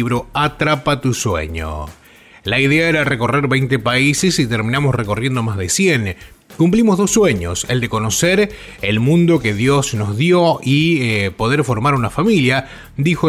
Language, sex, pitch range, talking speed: Spanish, male, 115-150 Hz, 155 wpm